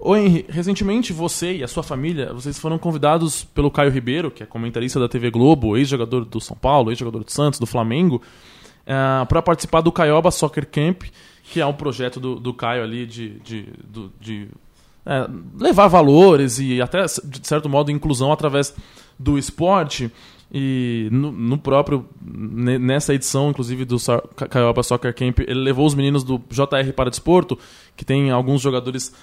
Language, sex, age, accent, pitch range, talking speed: Portuguese, male, 20-39, Brazilian, 125-150 Hz, 175 wpm